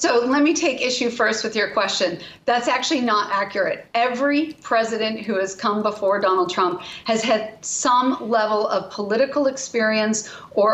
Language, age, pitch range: English, 40-59, 210-250 Hz